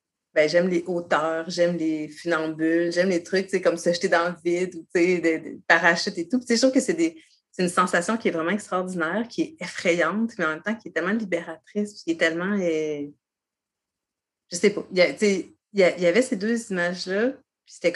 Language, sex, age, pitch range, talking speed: French, female, 30-49, 165-205 Hz, 230 wpm